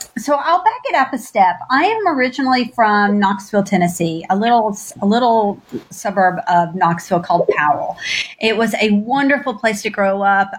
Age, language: 40-59, English